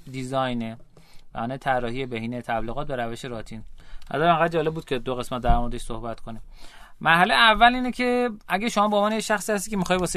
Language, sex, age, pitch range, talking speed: Persian, male, 30-49, 125-160 Hz, 195 wpm